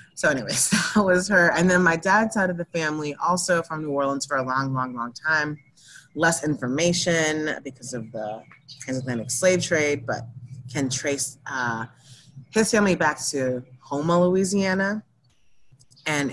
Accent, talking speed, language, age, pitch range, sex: American, 155 wpm, English, 30-49, 135-180 Hz, female